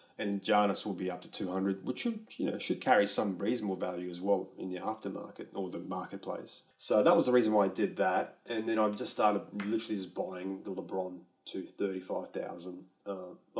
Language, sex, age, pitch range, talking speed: English, male, 30-49, 95-110 Hz, 200 wpm